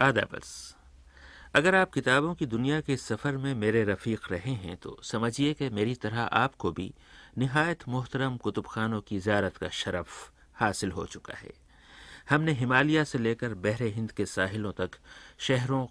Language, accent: Hindi, native